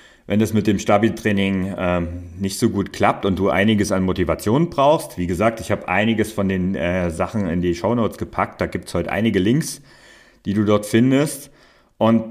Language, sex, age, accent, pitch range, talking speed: German, male, 40-59, German, 90-115 Hz, 205 wpm